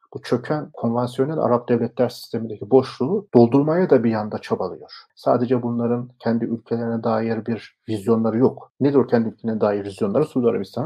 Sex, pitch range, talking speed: male, 115-150 Hz, 150 wpm